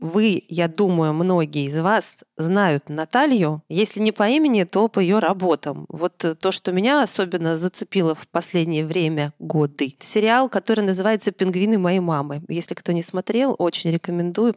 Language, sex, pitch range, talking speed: Russian, female, 165-205 Hz, 155 wpm